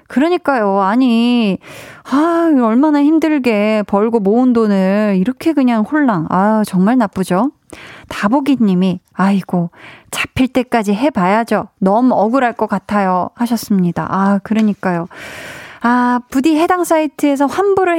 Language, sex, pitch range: Korean, female, 200-265 Hz